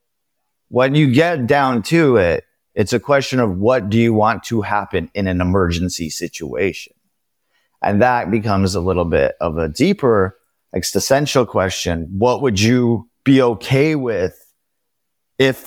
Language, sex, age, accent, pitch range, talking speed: English, male, 30-49, American, 100-130 Hz, 145 wpm